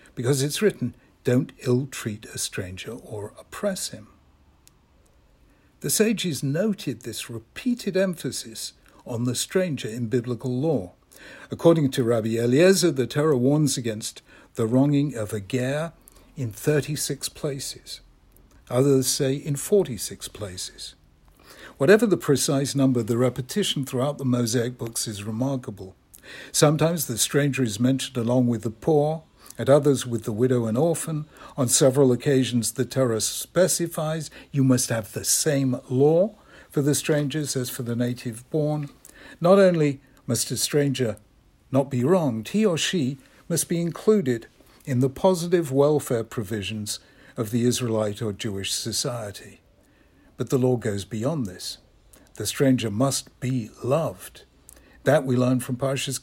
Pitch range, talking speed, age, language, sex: 120-150 Hz, 140 wpm, 60-79, English, male